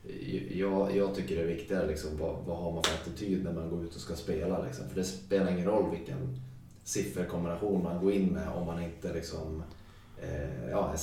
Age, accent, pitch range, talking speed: 20-39, native, 85-95 Hz, 205 wpm